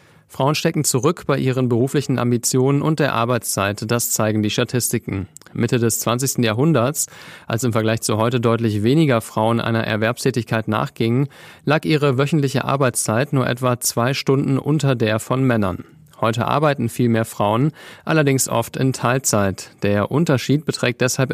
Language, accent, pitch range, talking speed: German, German, 115-140 Hz, 150 wpm